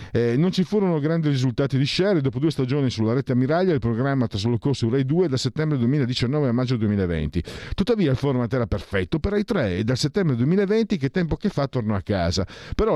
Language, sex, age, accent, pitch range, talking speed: Italian, male, 50-69, native, 105-150 Hz, 220 wpm